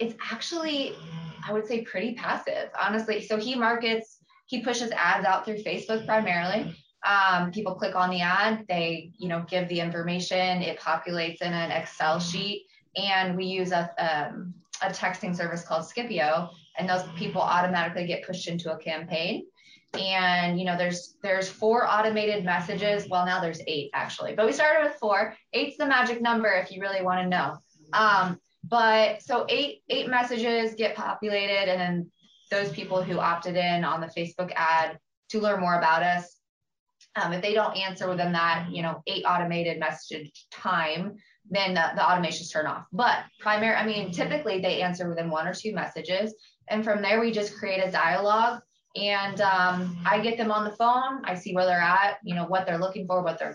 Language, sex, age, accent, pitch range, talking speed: English, female, 20-39, American, 175-215 Hz, 180 wpm